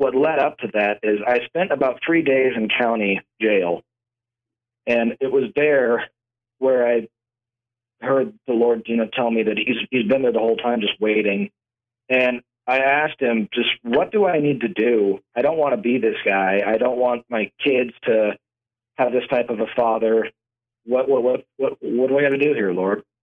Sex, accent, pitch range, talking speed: male, American, 110-125 Hz, 205 wpm